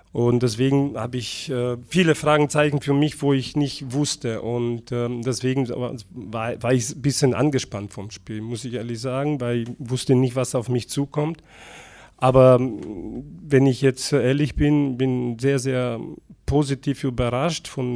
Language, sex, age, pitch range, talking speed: German, male, 40-59, 120-140 Hz, 160 wpm